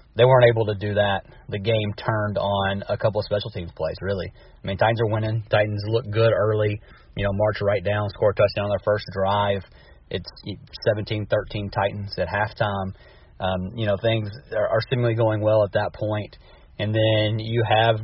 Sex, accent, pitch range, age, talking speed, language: male, American, 100-120 Hz, 30-49, 195 wpm, English